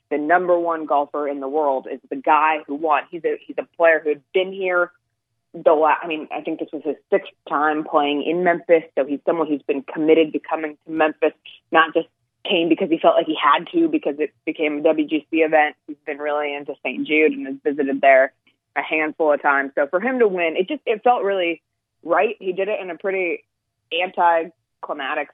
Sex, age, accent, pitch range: female, 20-39, American, 140-170 Hz